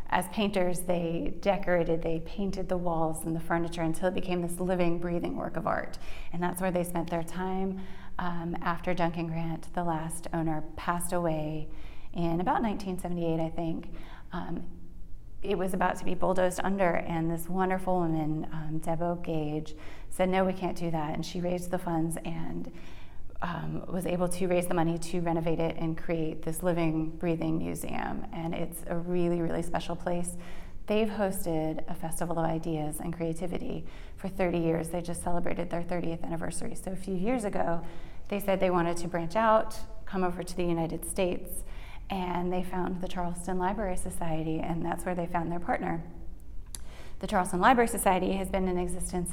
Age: 30-49